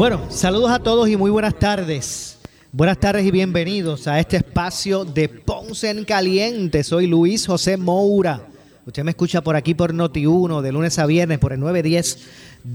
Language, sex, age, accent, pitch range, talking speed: Spanish, male, 30-49, American, 145-190 Hz, 180 wpm